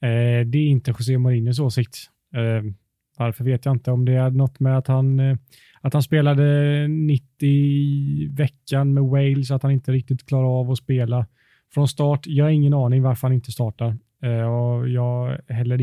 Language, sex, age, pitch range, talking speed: Swedish, male, 30-49, 120-140 Hz, 175 wpm